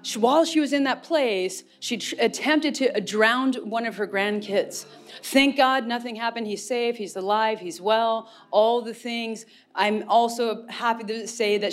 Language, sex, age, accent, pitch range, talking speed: English, female, 30-49, American, 225-295 Hz, 170 wpm